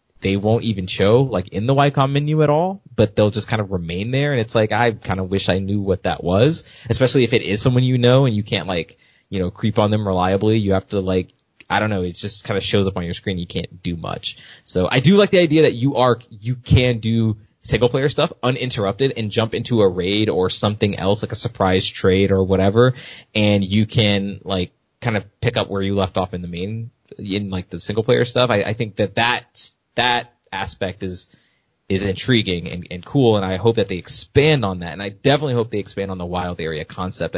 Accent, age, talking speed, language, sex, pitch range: American, 20-39, 240 wpm, English, male, 95-120 Hz